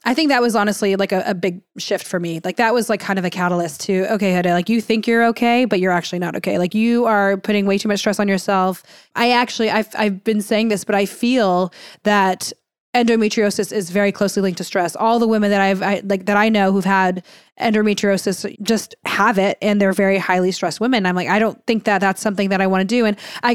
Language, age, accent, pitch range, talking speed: English, 20-39, American, 190-215 Hz, 250 wpm